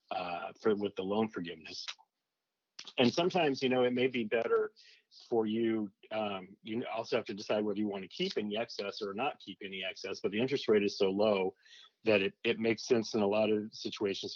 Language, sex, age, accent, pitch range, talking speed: English, male, 40-59, American, 100-115 Hz, 210 wpm